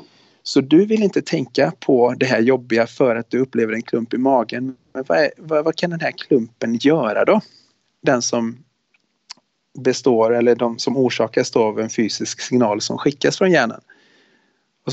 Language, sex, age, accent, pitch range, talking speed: Swedish, male, 30-49, native, 115-130 Hz, 175 wpm